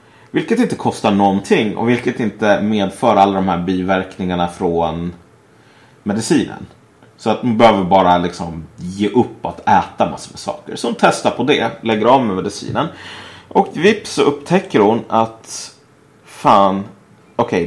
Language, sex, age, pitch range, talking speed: Swedish, male, 30-49, 95-135 Hz, 150 wpm